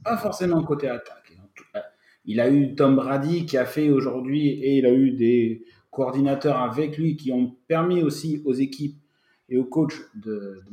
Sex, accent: male, French